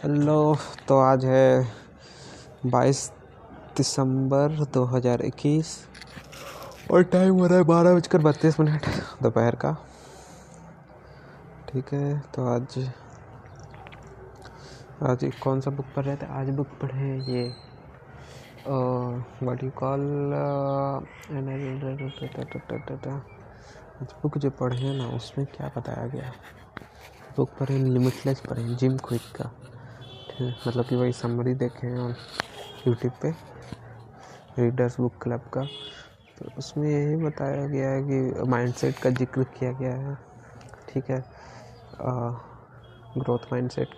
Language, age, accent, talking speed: Hindi, 20-39, native, 115 wpm